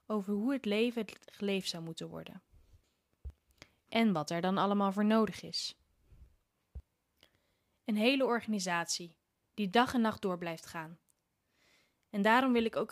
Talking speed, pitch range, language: 145 wpm, 160-220 Hz, Dutch